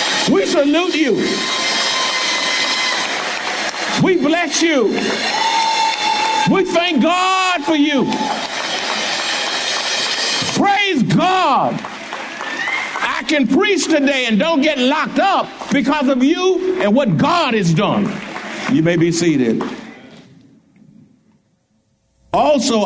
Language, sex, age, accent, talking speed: English, male, 60-79, American, 90 wpm